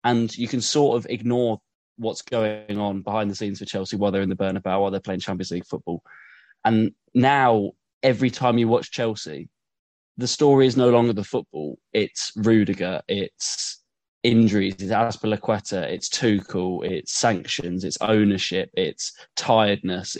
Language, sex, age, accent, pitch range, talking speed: English, male, 20-39, British, 100-125 Hz, 155 wpm